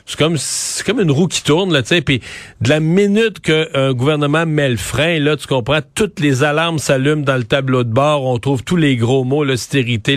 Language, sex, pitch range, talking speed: French, male, 145-180 Hz, 230 wpm